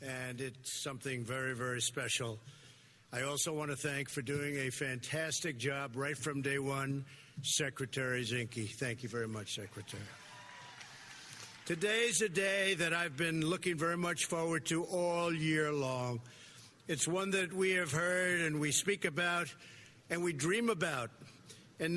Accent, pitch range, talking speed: American, 140-195 Hz, 155 wpm